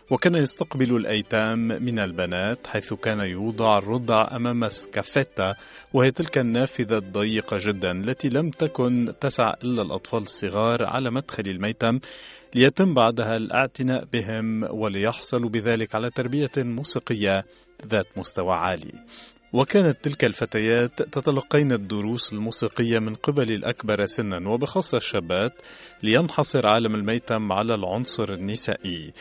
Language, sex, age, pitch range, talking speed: Arabic, male, 40-59, 105-130 Hz, 115 wpm